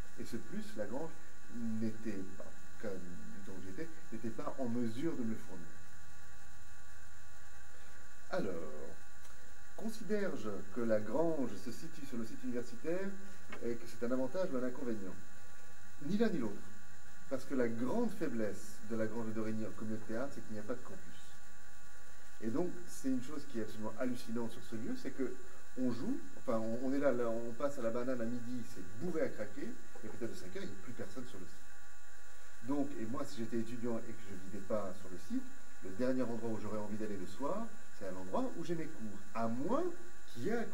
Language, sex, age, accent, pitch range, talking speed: French, male, 40-59, French, 100-130 Hz, 210 wpm